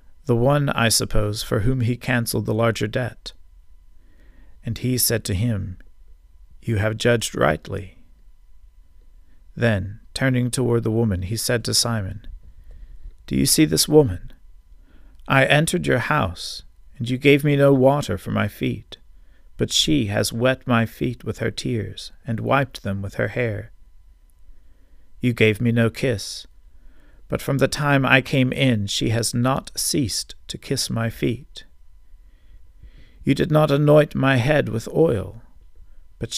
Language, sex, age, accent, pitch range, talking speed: English, male, 50-69, American, 75-120 Hz, 150 wpm